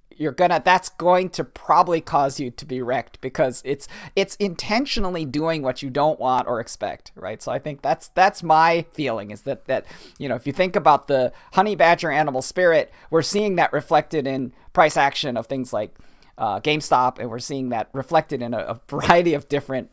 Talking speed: 200 wpm